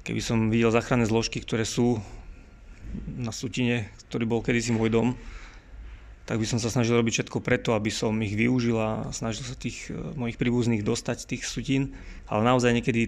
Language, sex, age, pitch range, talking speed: Slovak, male, 30-49, 110-125 Hz, 175 wpm